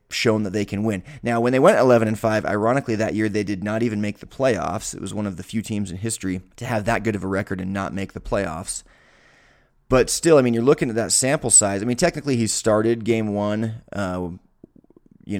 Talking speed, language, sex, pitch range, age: 240 wpm, English, male, 95-115 Hz, 30-49